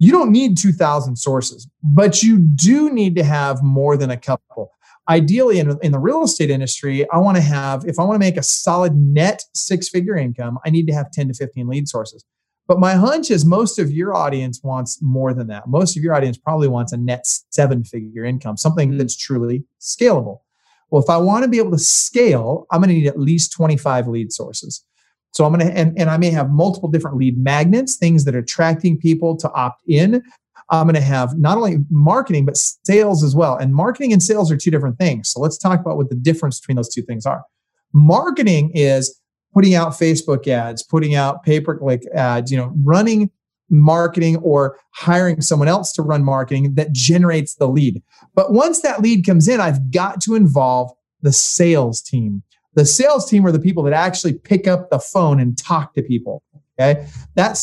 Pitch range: 135-180 Hz